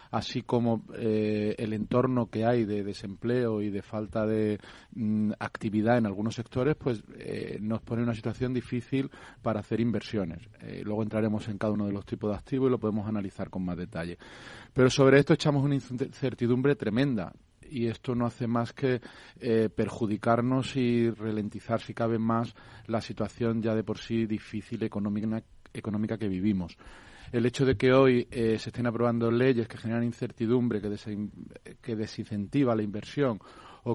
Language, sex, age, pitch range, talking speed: Spanish, male, 40-59, 105-120 Hz, 170 wpm